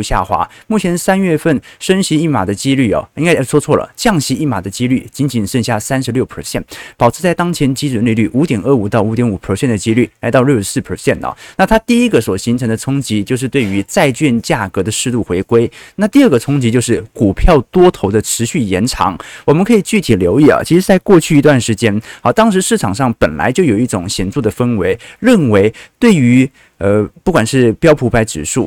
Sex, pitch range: male, 110-155 Hz